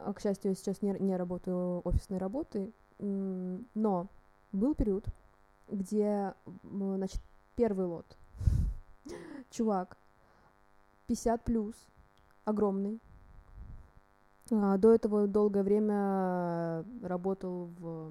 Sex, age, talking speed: female, 20-39, 85 wpm